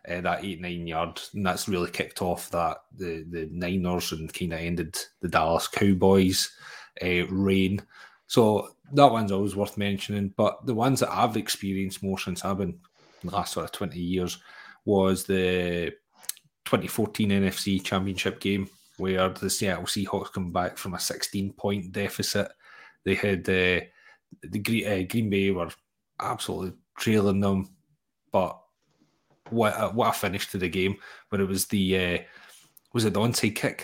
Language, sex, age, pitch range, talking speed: English, male, 30-49, 95-100 Hz, 165 wpm